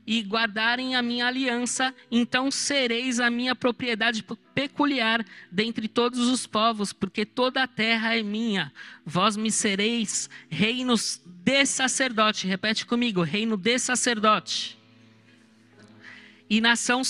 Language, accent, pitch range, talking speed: Portuguese, Brazilian, 205-245 Hz, 120 wpm